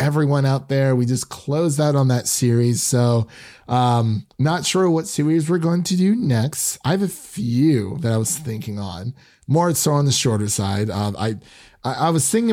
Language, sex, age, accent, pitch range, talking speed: English, male, 30-49, American, 110-145 Hz, 195 wpm